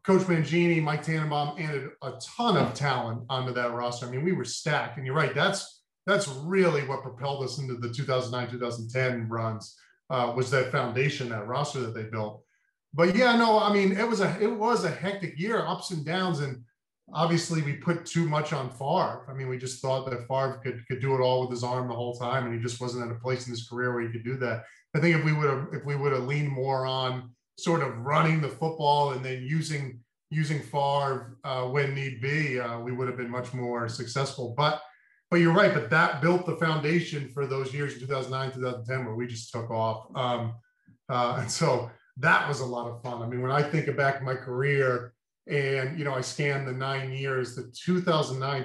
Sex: male